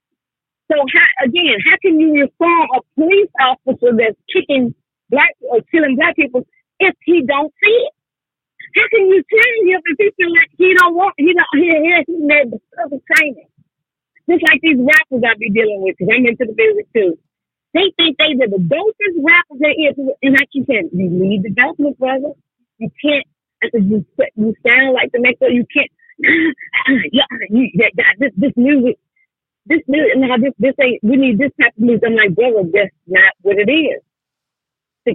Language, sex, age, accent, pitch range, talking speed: English, female, 40-59, American, 220-330 Hz, 190 wpm